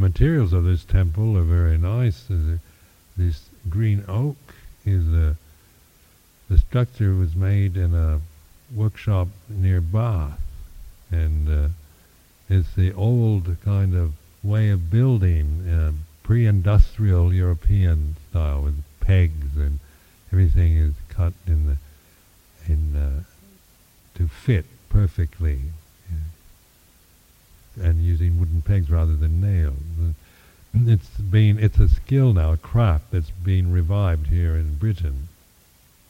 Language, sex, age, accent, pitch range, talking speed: English, male, 60-79, American, 80-100 Hz, 120 wpm